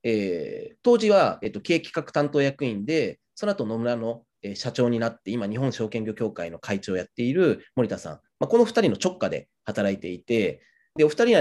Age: 30-49